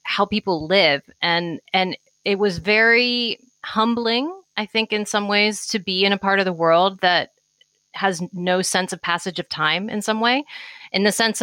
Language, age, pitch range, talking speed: English, 30-49, 170-205 Hz, 190 wpm